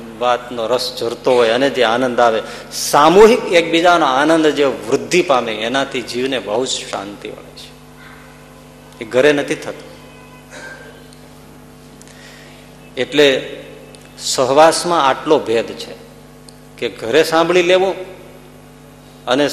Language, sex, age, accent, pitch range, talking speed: Gujarati, male, 50-69, native, 125-160 Hz, 45 wpm